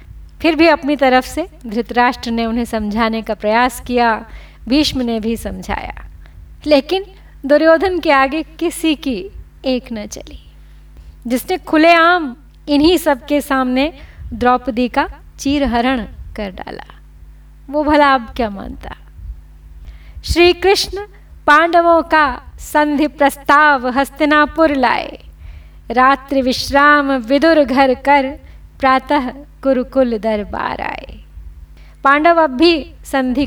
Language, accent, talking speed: Hindi, native, 110 wpm